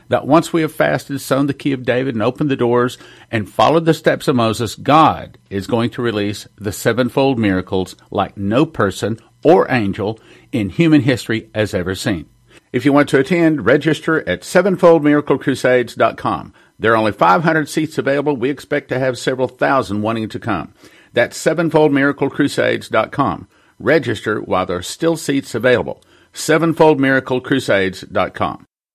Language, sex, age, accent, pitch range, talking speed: English, male, 50-69, American, 125-165 Hz, 150 wpm